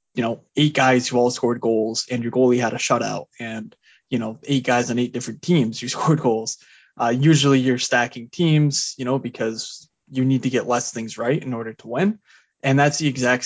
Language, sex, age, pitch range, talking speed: English, male, 20-39, 120-140 Hz, 220 wpm